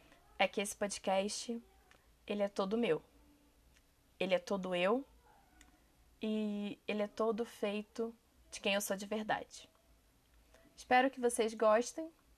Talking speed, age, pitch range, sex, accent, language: 130 wpm, 20-39, 195-230 Hz, female, Brazilian, Portuguese